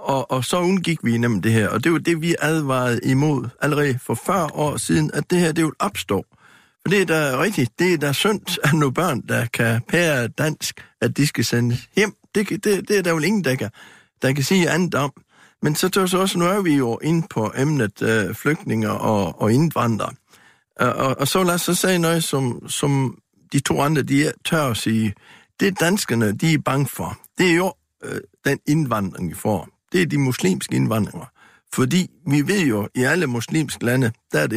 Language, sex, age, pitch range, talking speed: Danish, male, 60-79, 115-160 Hz, 215 wpm